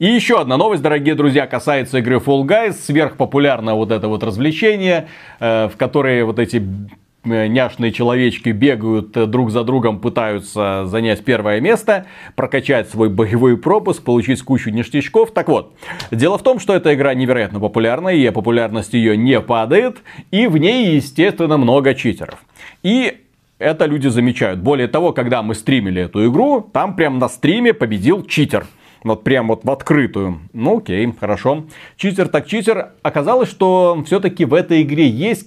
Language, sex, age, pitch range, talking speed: Russian, male, 30-49, 115-165 Hz, 155 wpm